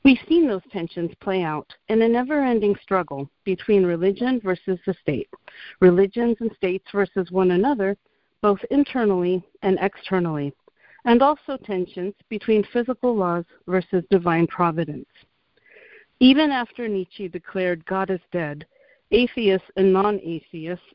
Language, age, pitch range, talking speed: English, 50-69, 180-235 Hz, 125 wpm